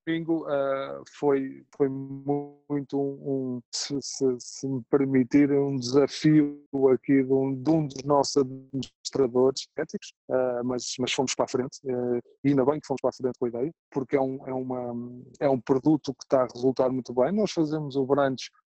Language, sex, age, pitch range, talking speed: Portuguese, male, 20-39, 130-150 Hz, 185 wpm